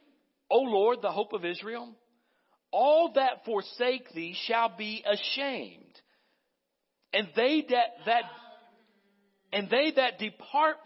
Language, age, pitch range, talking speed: English, 60-79, 185-275 Hz, 120 wpm